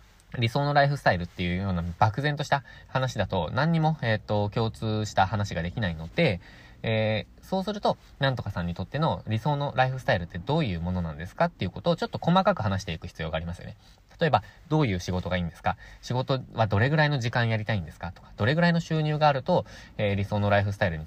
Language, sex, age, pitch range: Japanese, male, 20-39, 90-125 Hz